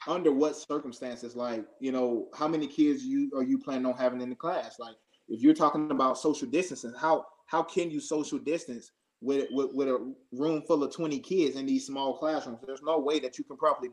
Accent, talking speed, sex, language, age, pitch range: American, 220 wpm, male, English, 20-39, 135-160 Hz